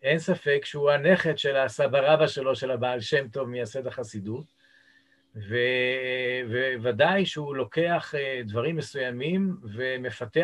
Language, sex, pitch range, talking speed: Hebrew, male, 130-165 Hz, 115 wpm